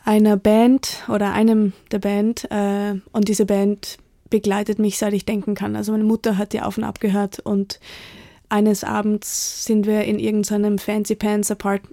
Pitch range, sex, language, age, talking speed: 205-220 Hz, female, German, 20-39, 170 wpm